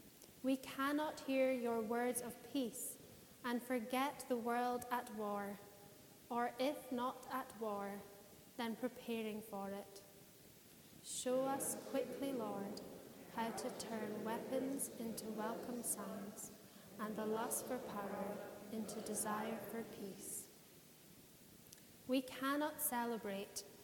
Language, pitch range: English, 210-260 Hz